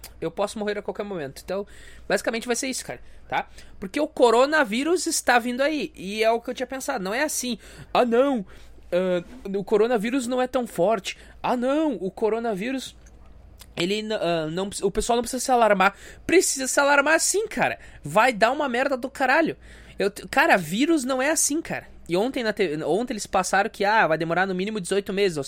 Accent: Brazilian